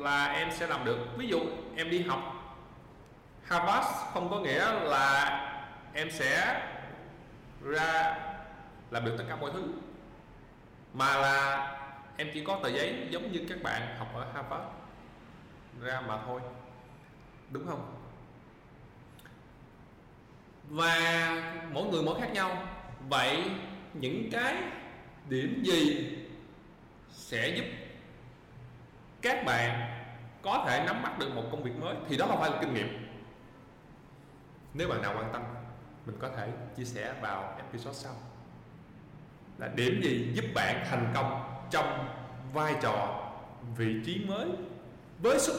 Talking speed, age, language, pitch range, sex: 135 wpm, 20-39, Vietnamese, 115-145 Hz, male